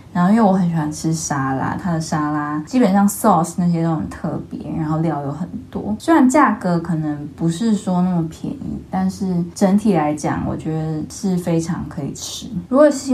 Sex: female